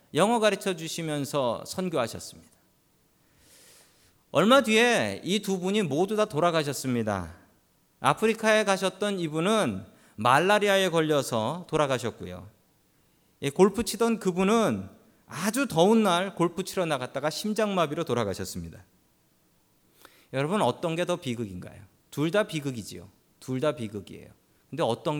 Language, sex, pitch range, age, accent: Korean, male, 135-200 Hz, 40-59, native